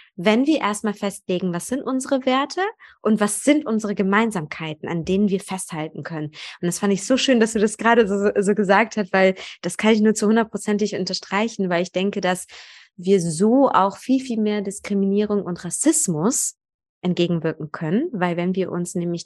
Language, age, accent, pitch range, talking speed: German, 20-39, German, 180-230 Hz, 185 wpm